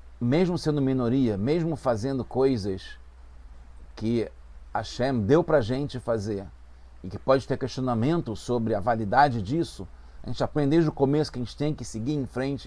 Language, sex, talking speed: English, male, 170 wpm